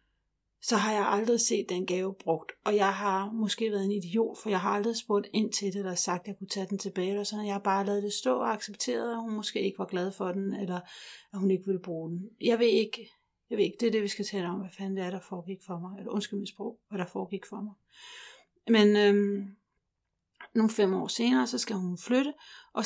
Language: Danish